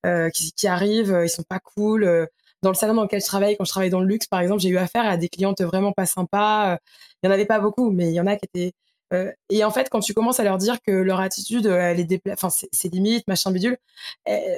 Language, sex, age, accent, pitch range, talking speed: French, female, 20-39, French, 190-220 Hz, 290 wpm